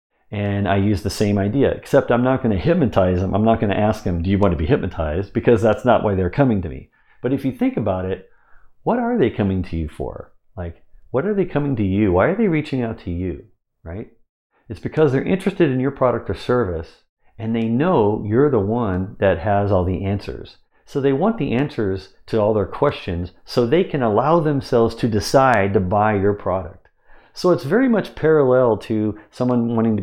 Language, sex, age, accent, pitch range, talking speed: English, male, 50-69, American, 100-130 Hz, 220 wpm